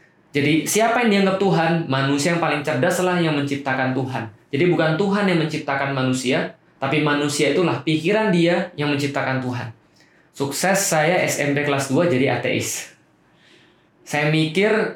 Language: Indonesian